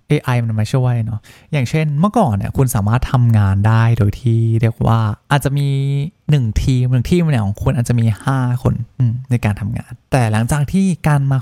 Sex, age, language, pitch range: male, 20-39, Thai, 110-145 Hz